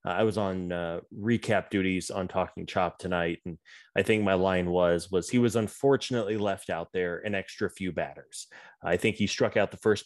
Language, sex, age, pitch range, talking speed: English, male, 20-39, 95-115 Hz, 205 wpm